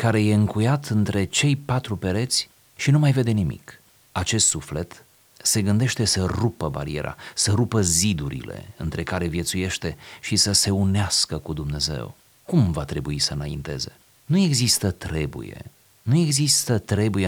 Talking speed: 145 wpm